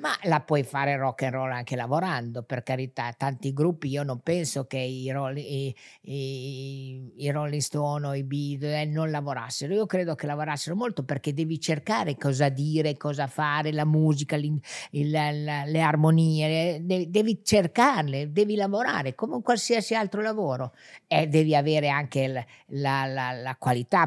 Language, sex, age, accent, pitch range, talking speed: Italian, female, 50-69, native, 135-165 Hz, 170 wpm